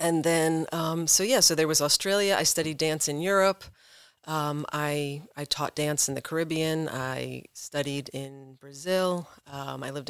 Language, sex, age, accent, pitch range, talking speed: English, female, 40-59, American, 145-180 Hz, 170 wpm